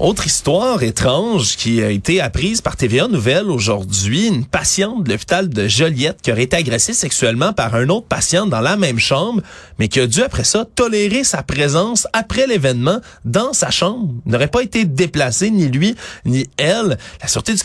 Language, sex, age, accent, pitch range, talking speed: French, male, 30-49, Canadian, 120-170 Hz, 185 wpm